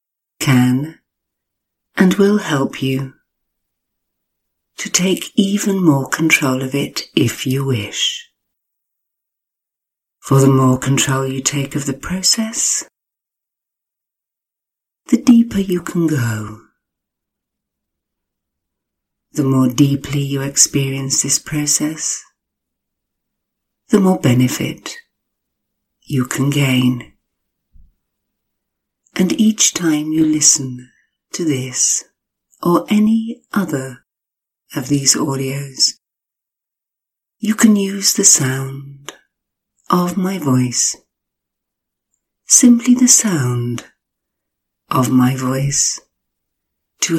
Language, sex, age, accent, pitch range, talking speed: English, female, 60-79, British, 130-185 Hz, 90 wpm